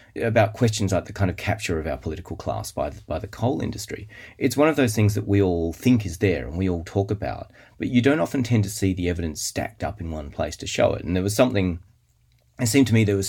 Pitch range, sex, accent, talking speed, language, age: 85-110 Hz, male, Australian, 265 wpm, English, 30-49